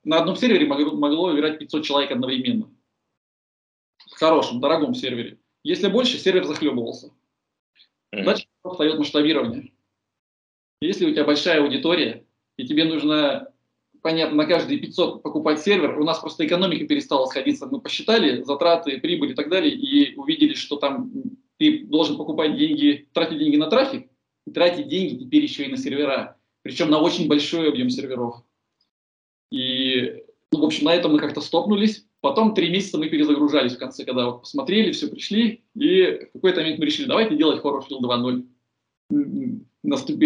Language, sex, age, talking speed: Russian, male, 20-39, 150 wpm